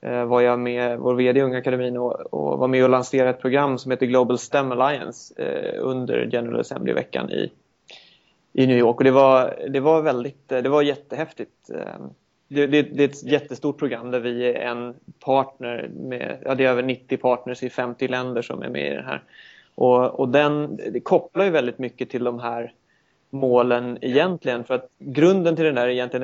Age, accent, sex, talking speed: 30-49, native, male, 200 wpm